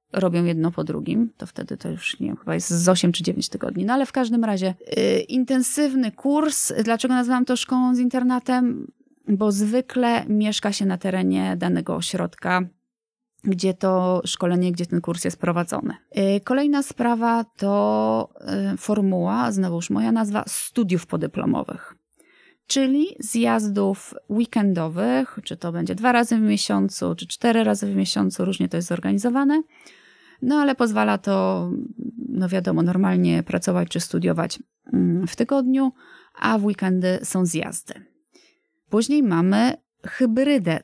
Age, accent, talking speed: 20-39, native, 145 wpm